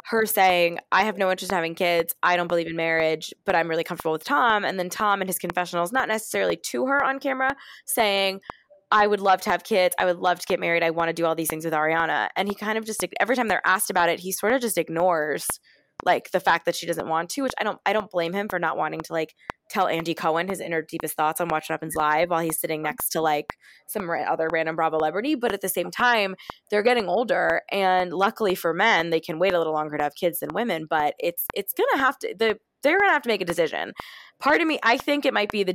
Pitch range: 165-205 Hz